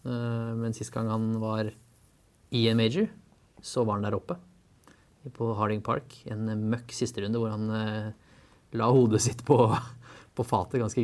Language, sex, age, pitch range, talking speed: English, male, 20-39, 110-125 Hz, 165 wpm